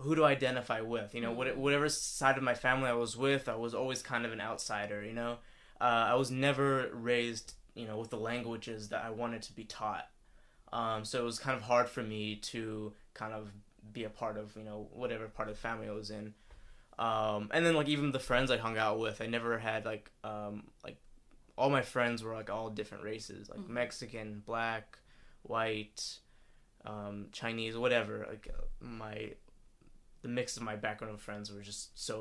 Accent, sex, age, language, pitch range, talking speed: American, male, 20-39, English, 110-125 Hz, 205 wpm